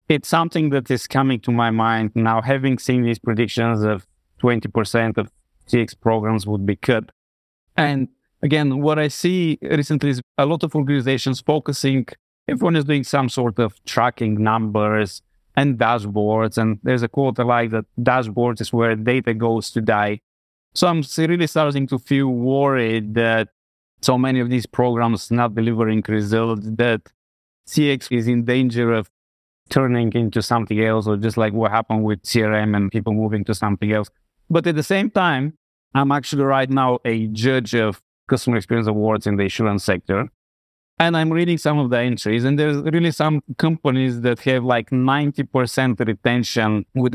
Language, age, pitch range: English, 20-39, 110-140 Hz